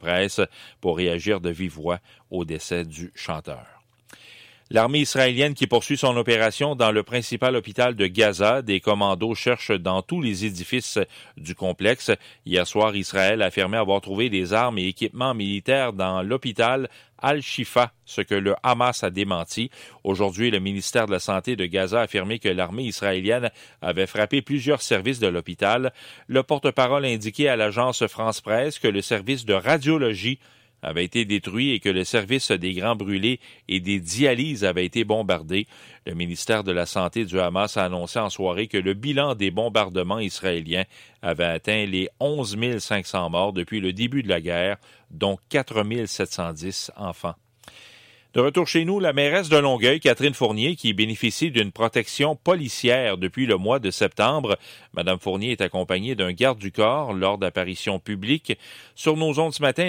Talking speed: 170 wpm